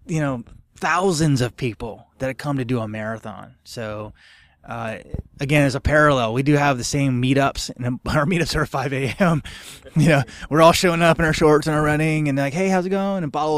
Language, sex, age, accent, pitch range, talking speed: English, male, 20-39, American, 115-145 Hz, 230 wpm